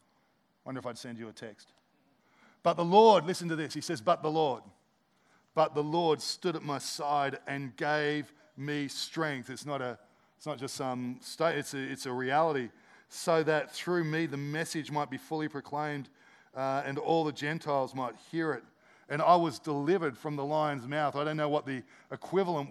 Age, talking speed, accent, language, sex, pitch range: 40-59, 200 wpm, Australian, English, male, 140-165 Hz